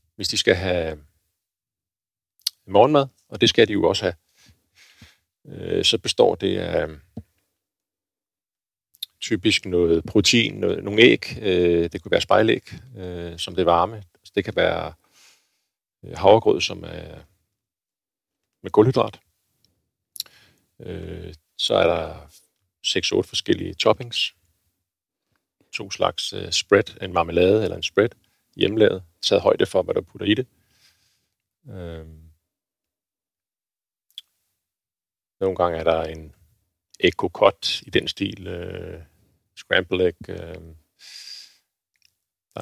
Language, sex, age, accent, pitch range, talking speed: Danish, male, 40-59, native, 85-100 Hz, 100 wpm